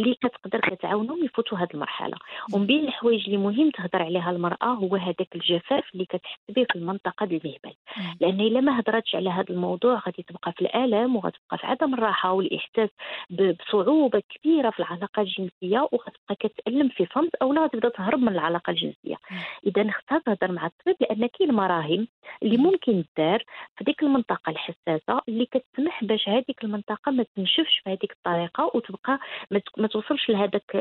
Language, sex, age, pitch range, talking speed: Arabic, female, 40-59, 185-235 Hz, 155 wpm